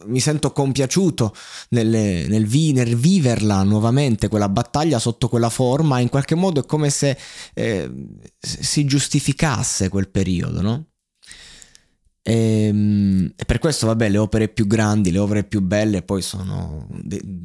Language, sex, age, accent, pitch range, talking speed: Italian, male, 20-39, native, 100-130 Hz, 145 wpm